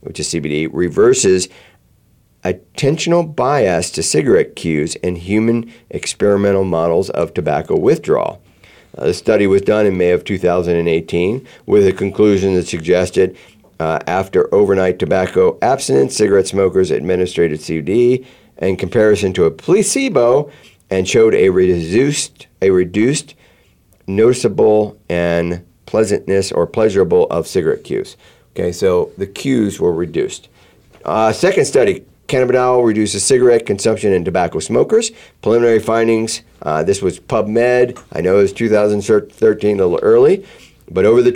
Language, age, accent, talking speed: English, 50-69, American, 130 wpm